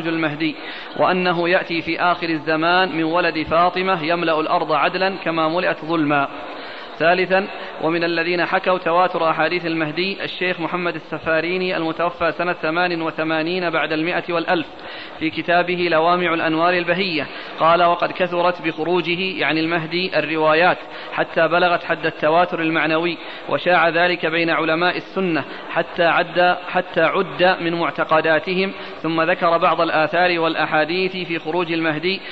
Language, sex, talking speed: Arabic, male, 125 wpm